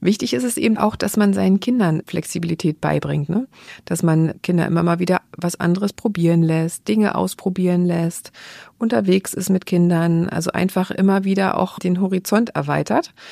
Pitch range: 175-210 Hz